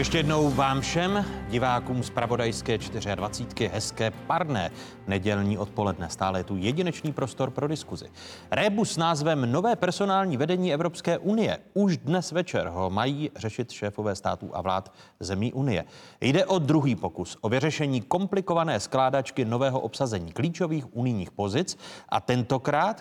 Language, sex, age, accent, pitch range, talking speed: Czech, male, 30-49, native, 105-160 Hz, 140 wpm